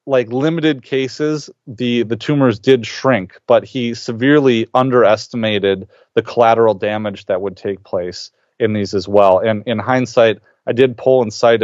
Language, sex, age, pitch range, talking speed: English, male, 30-49, 105-130 Hz, 155 wpm